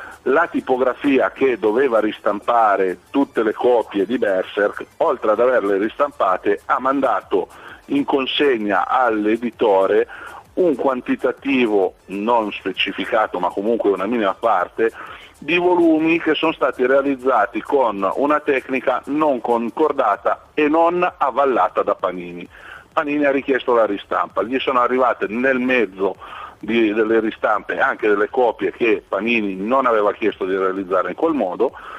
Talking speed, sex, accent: 130 wpm, male, native